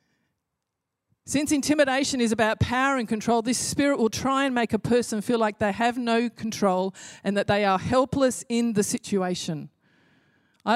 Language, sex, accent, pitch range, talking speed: English, female, Australian, 195-245 Hz, 165 wpm